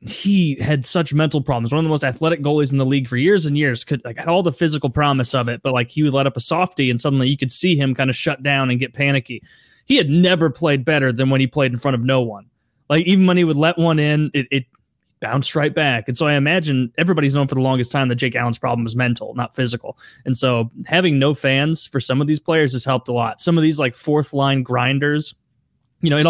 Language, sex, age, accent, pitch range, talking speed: English, male, 20-39, American, 125-155 Hz, 265 wpm